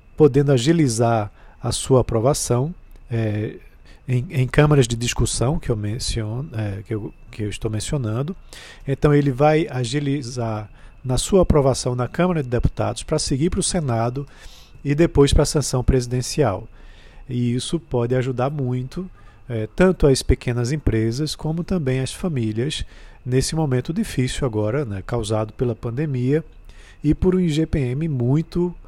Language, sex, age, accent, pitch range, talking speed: Portuguese, male, 40-59, Brazilian, 115-150 Hz, 130 wpm